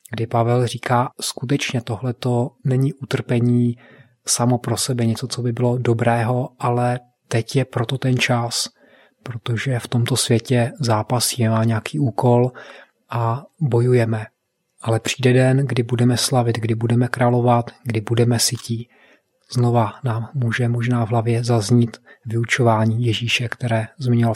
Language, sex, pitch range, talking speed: Czech, male, 115-125 Hz, 135 wpm